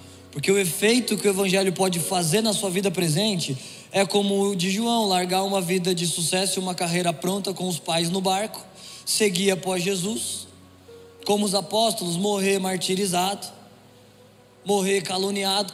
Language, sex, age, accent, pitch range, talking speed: Portuguese, male, 20-39, Brazilian, 165-195 Hz, 155 wpm